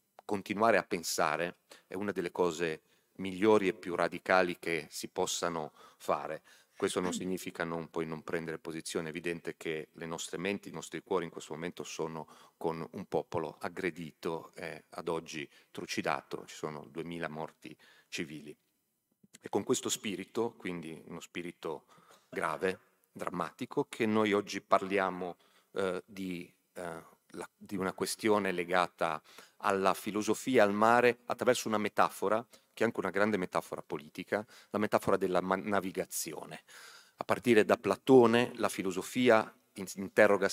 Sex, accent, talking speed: male, native, 140 wpm